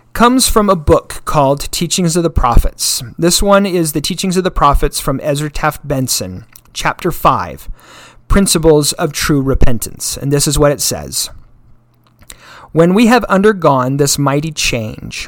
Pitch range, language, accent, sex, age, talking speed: 135-195 Hz, English, American, male, 40-59, 155 wpm